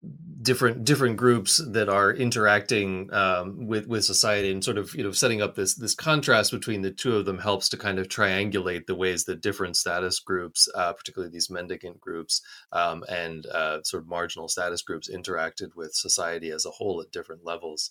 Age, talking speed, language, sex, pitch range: 30-49, 195 wpm, English, male, 90-115 Hz